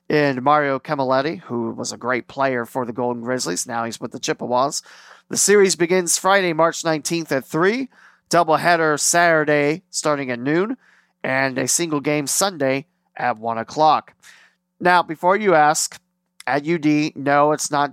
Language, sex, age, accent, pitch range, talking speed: English, male, 30-49, American, 125-170 Hz, 155 wpm